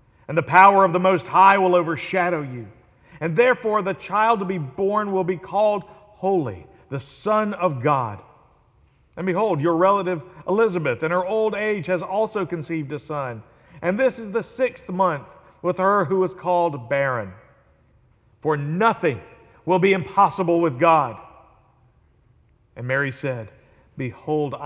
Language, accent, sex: English, American, male